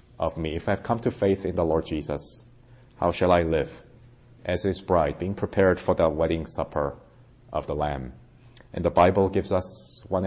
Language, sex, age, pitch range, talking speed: English, male, 30-49, 80-110 Hz, 200 wpm